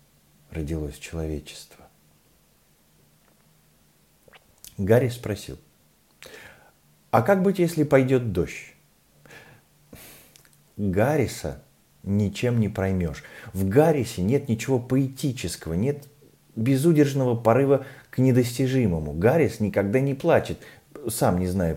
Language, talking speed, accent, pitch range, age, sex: Russian, 85 wpm, native, 85-120 Hz, 40-59, male